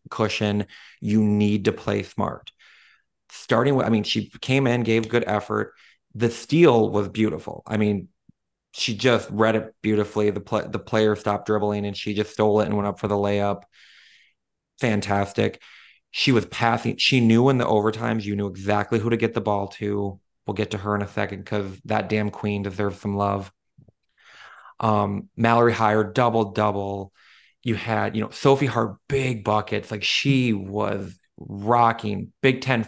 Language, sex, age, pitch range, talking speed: English, male, 30-49, 105-120 Hz, 175 wpm